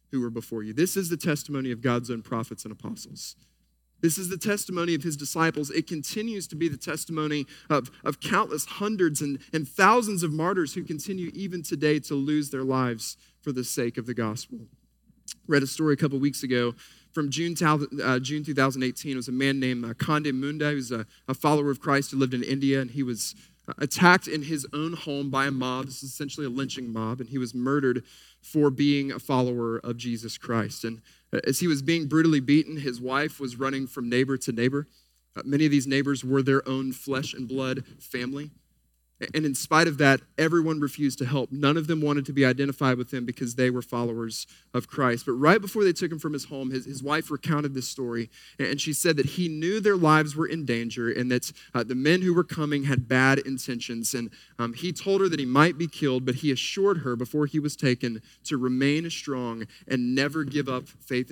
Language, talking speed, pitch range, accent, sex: English, 215 wpm, 125-155 Hz, American, male